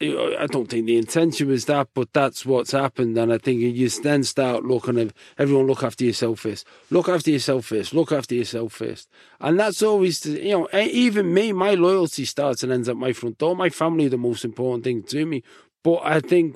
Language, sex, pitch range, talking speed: English, male, 120-160 Hz, 225 wpm